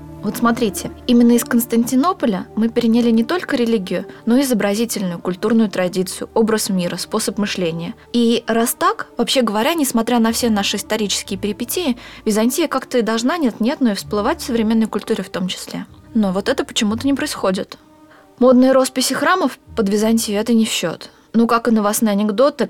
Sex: female